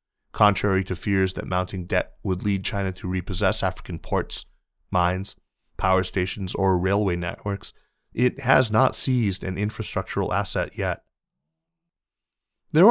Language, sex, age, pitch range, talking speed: English, male, 30-49, 90-105 Hz, 130 wpm